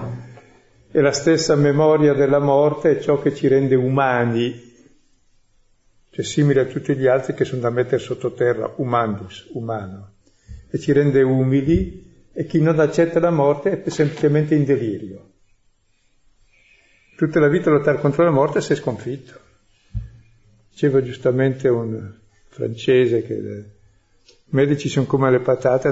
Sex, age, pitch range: male, 50-69, 120-150 Hz